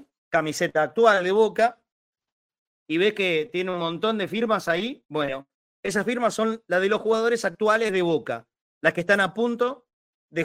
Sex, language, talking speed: male, Spanish, 170 wpm